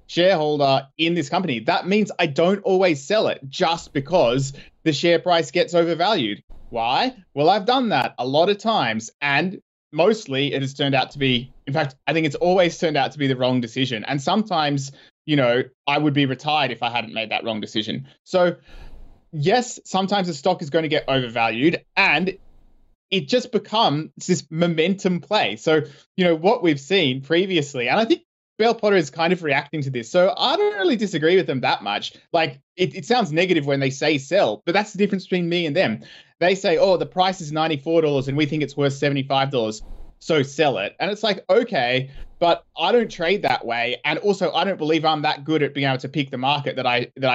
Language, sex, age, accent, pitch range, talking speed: English, male, 20-39, Australian, 135-180 Hz, 215 wpm